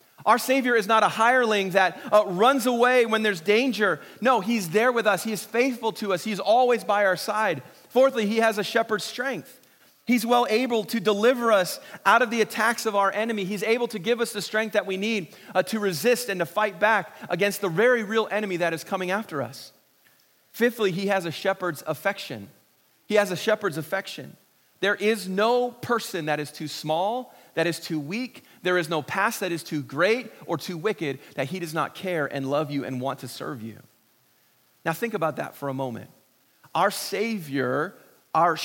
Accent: American